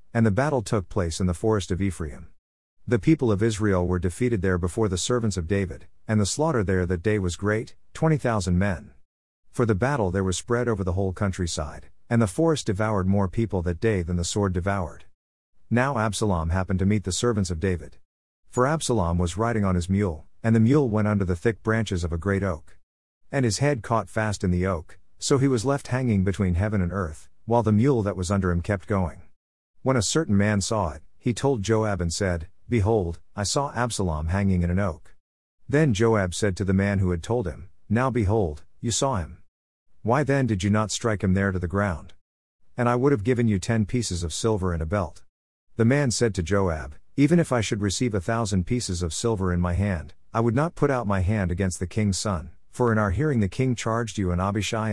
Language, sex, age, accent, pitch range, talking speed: English, male, 50-69, American, 90-115 Hz, 225 wpm